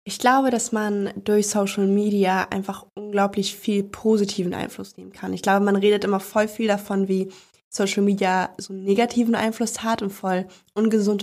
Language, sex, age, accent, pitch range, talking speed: German, female, 20-39, German, 190-210 Hz, 175 wpm